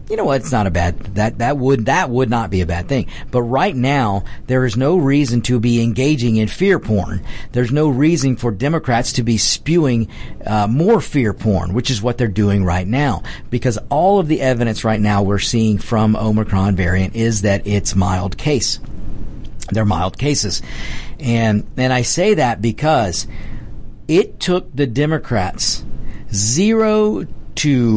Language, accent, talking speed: English, American, 175 wpm